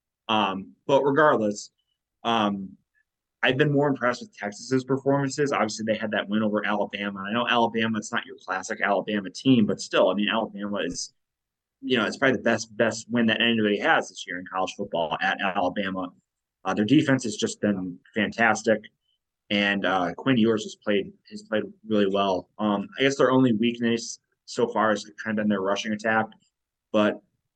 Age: 20-39